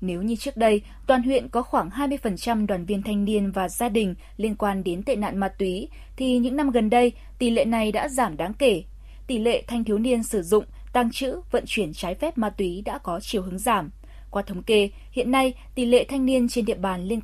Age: 20-39